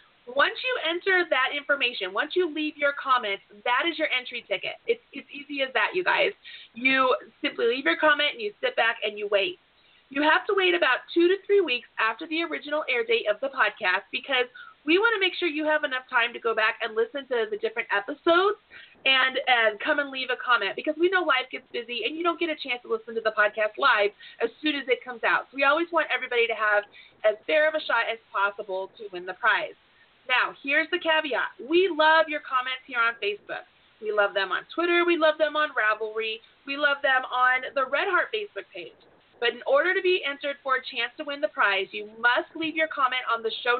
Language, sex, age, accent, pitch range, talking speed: English, female, 30-49, American, 230-335 Hz, 235 wpm